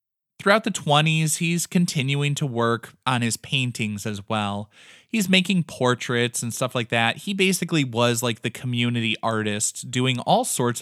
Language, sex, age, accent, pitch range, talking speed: English, male, 20-39, American, 115-160 Hz, 160 wpm